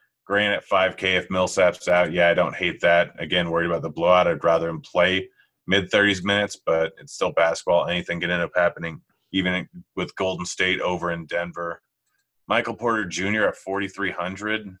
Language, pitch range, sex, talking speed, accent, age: English, 85-100 Hz, male, 175 wpm, American, 30-49